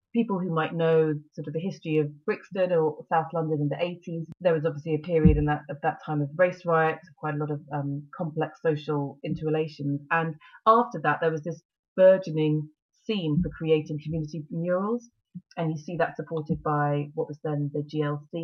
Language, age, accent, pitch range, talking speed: English, 30-49, British, 150-175 Hz, 195 wpm